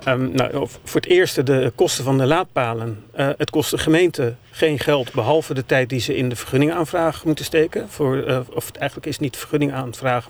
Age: 40-59